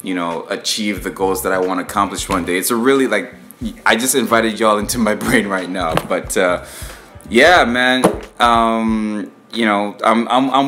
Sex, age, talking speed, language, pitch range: male, 20-39, 195 wpm, English, 95-110 Hz